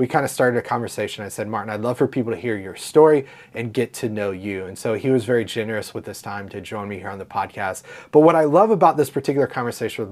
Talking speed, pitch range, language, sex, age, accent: 280 wpm, 115-145 Hz, English, male, 30-49, American